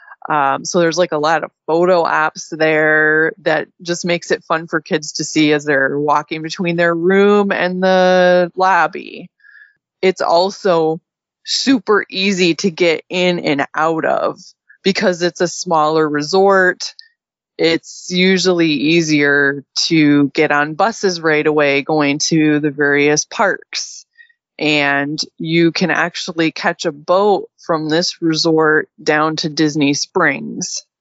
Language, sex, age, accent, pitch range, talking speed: English, female, 20-39, American, 155-190 Hz, 135 wpm